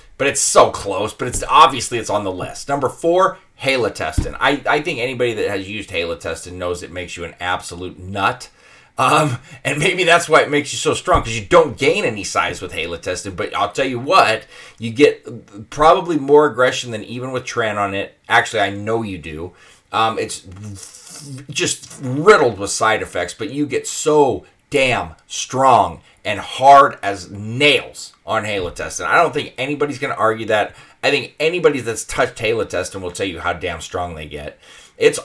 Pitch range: 100-145 Hz